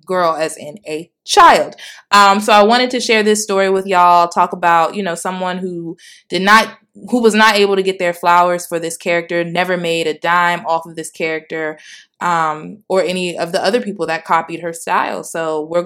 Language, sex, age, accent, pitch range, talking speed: English, female, 20-39, American, 165-210 Hz, 210 wpm